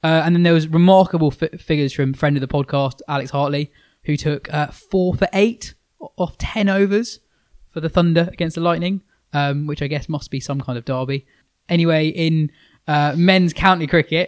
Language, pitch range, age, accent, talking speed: English, 135-155 Hz, 20-39, British, 200 wpm